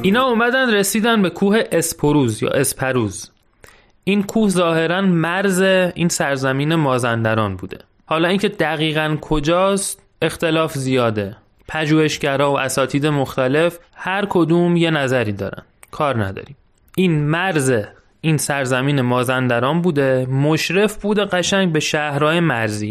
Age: 30-49